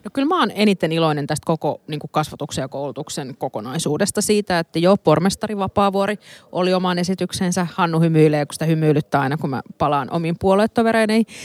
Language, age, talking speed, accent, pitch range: Finnish, 30-49, 170 wpm, native, 160-205 Hz